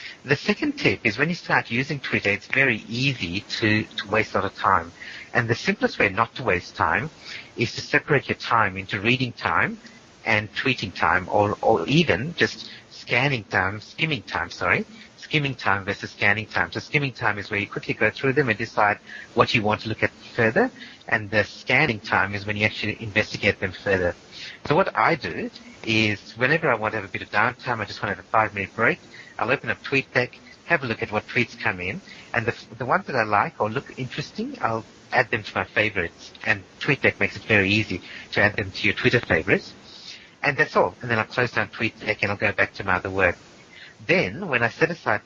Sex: male